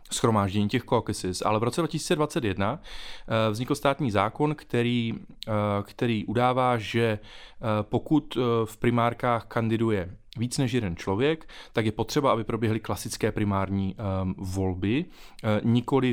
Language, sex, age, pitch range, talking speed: Czech, male, 30-49, 105-120 Hz, 115 wpm